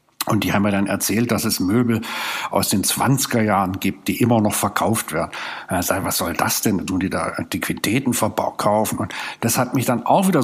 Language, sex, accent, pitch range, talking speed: German, male, German, 105-125 Hz, 220 wpm